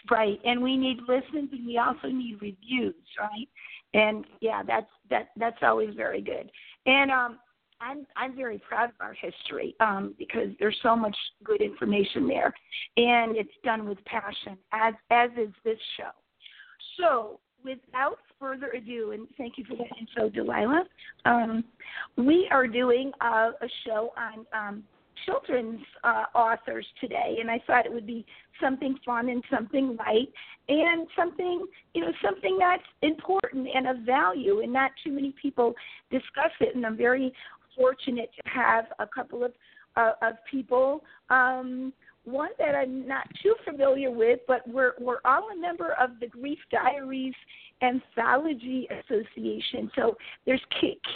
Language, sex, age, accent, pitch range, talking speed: English, female, 50-69, American, 230-275 Hz, 155 wpm